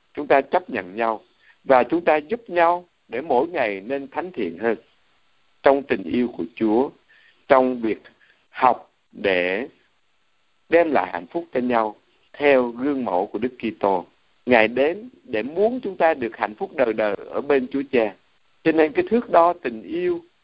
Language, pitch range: Vietnamese, 115-175 Hz